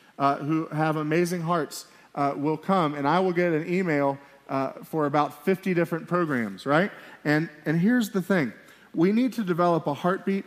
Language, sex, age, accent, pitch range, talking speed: English, male, 40-59, American, 150-200 Hz, 185 wpm